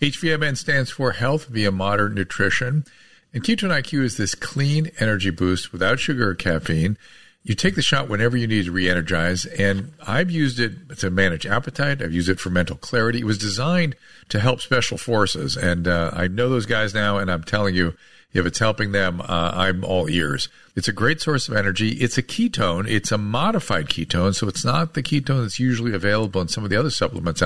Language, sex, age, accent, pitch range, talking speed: English, male, 50-69, American, 95-130 Hz, 205 wpm